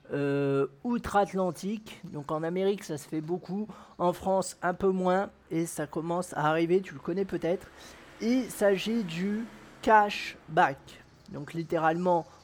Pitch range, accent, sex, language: 165-210 Hz, French, male, French